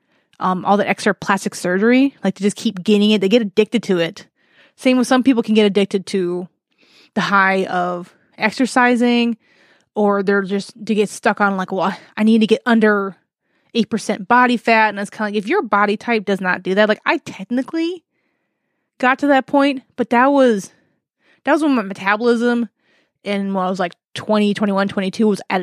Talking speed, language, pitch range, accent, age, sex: 195 wpm, English, 195-240 Hz, American, 20-39, female